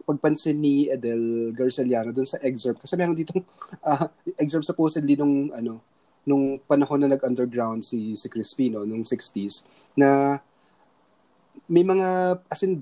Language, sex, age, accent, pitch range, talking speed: Filipino, male, 20-39, native, 125-155 Hz, 135 wpm